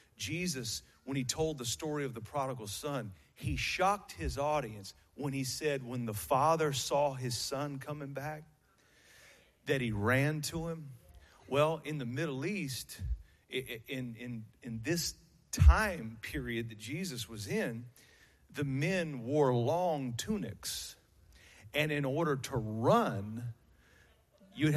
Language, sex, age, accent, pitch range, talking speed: English, male, 40-59, American, 110-150 Hz, 135 wpm